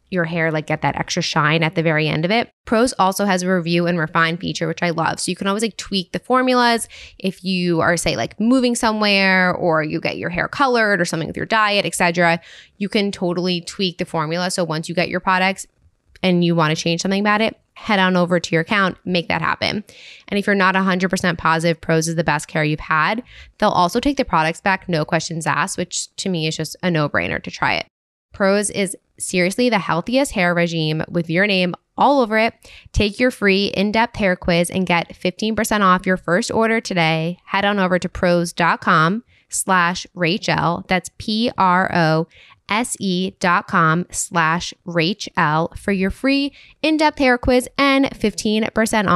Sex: female